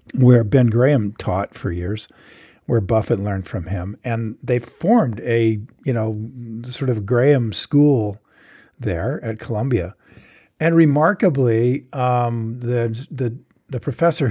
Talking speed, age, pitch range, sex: 130 wpm, 50-69, 110-150 Hz, male